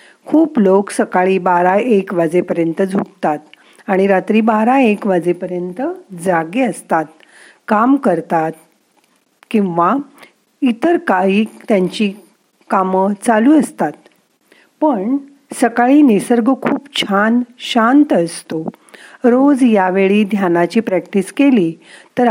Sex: female